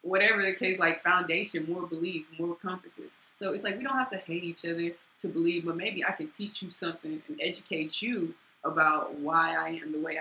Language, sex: English, female